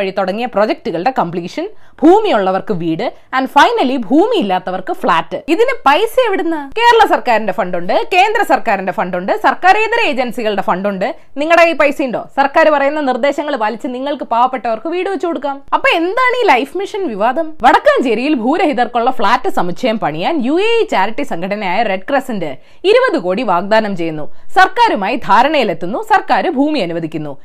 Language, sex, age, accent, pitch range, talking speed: Malayalam, female, 20-39, native, 215-345 Hz, 120 wpm